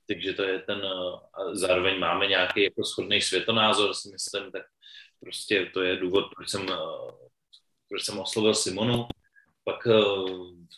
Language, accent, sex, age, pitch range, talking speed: Czech, native, male, 30-49, 90-110 Hz, 140 wpm